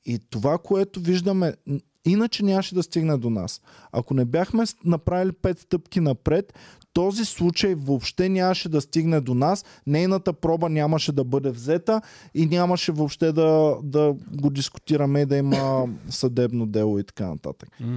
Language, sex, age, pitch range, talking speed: Bulgarian, male, 20-39, 135-175 Hz, 155 wpm